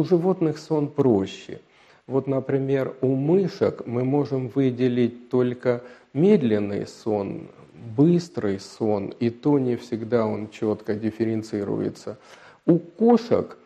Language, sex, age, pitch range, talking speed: Russian, male, 50-69, 115-145 Hz, 110 wpm